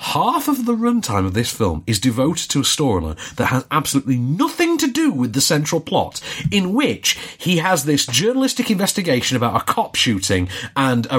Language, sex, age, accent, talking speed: English, male, 40-59, British, 190 wpm